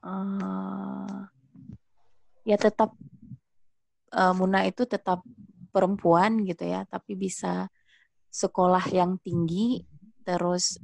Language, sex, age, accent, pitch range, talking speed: Indonesian, female, 20-39, native, 165-200 Hz, 90 wpm